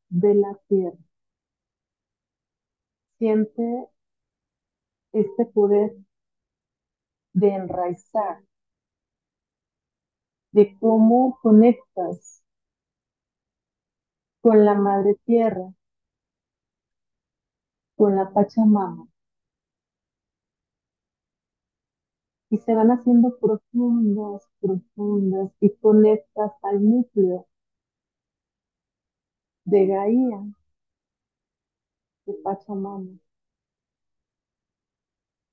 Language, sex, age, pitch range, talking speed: Spanish, female, 40-59, 200-225 Hz, 55 wpm